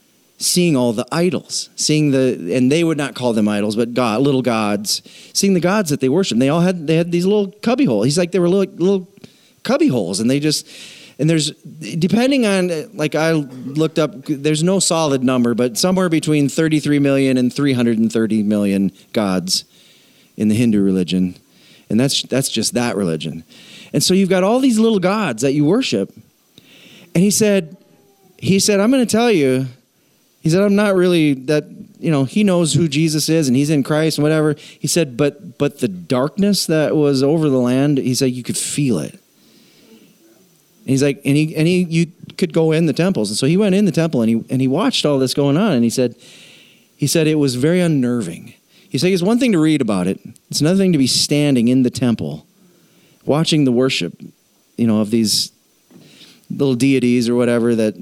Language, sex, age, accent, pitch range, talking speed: English, male, 30-49, American, 125-180 Hz, 205 wpm